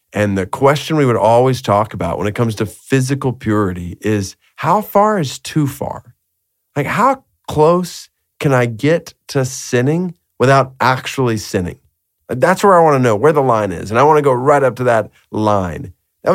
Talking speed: 190 wpm